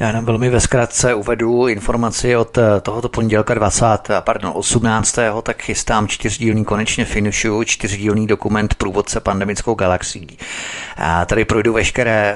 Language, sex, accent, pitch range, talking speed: Czech, male, native, 95-110 Hz, 130 wpm